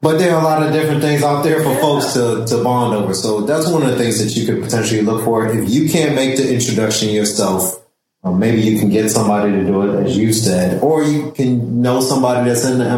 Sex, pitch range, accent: male, 100-130 Hz, American